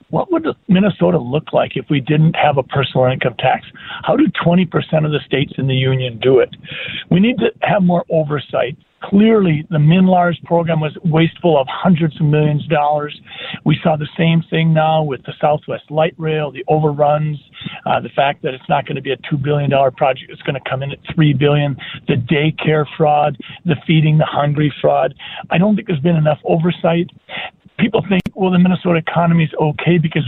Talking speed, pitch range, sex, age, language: 200 wpm, 145-170 Hz, male, 50-69, English